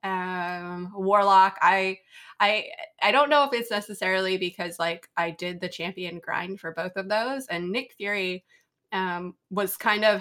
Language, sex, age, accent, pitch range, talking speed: English, female, 20-39, American, 175-210 Hz, 165 wpm